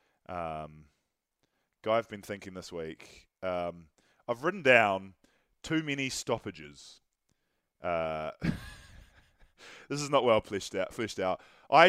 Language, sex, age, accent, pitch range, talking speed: English, male, 20-39, Australian, 95-125 Hz, 120 wpm